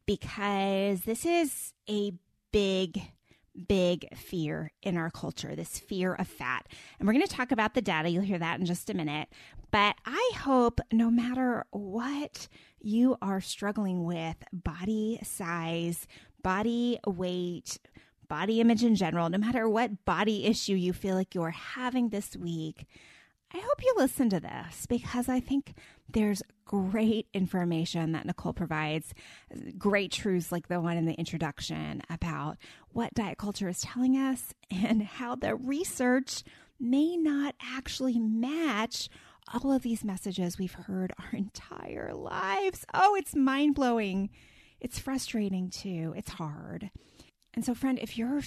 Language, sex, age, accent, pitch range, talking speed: English, female, 20-39, American, 175-245 Hz, 145 wpm